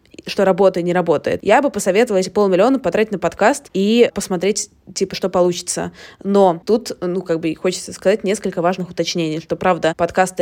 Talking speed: 175 wpm